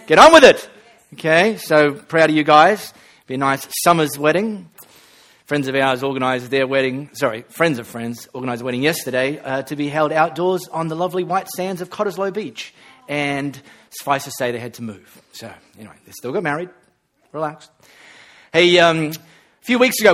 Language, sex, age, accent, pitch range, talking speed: English, male, 30-49, Australian, 145-180 Hz, 190 wpm